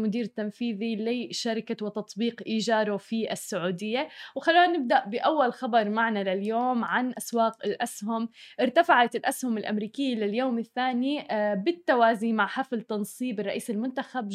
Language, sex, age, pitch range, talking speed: Arabic, female, 20-39, 225-265 Hz, 115 wpm